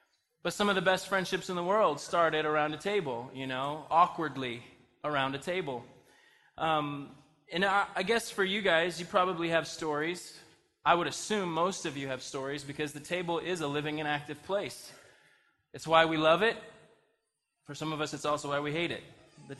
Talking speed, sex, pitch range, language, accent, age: 195 wpm, male, 150-195 Hz, English, American, 20-39